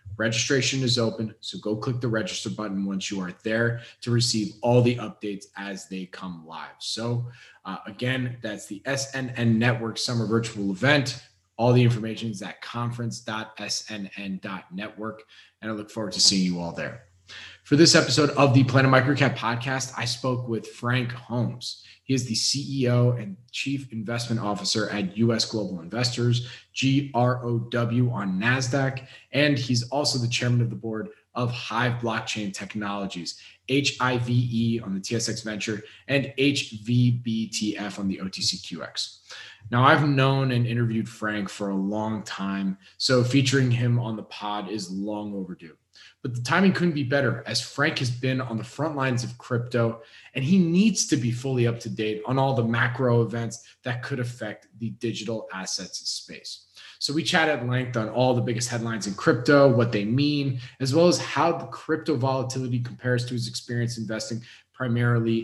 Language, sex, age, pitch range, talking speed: English, male, 30-49, 110-130 Hz, 165 wpm